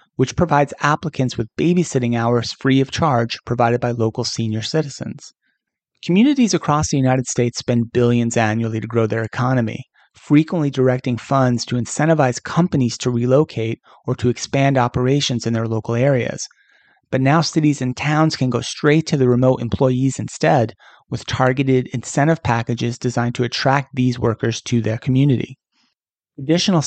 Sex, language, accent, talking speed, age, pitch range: male, English, American, 150 wpm, 30-49, 120-145 Hz